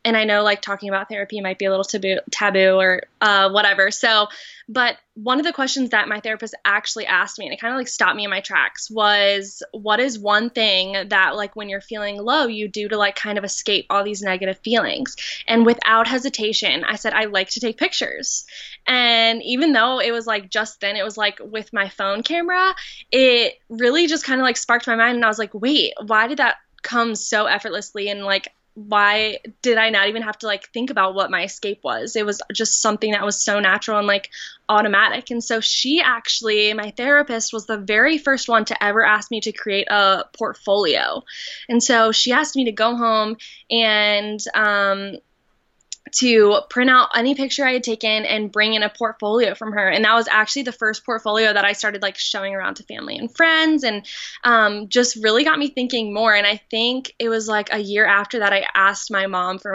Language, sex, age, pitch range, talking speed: English, female, 20-39, 205-235 Hz, 215 wpm